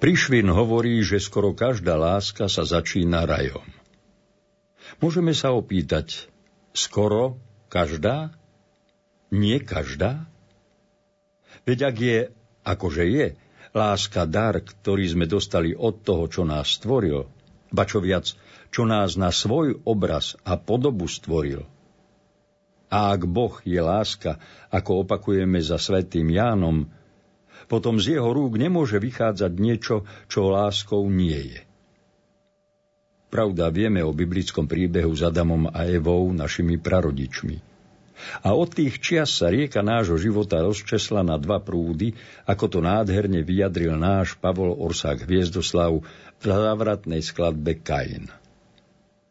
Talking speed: 120 wpm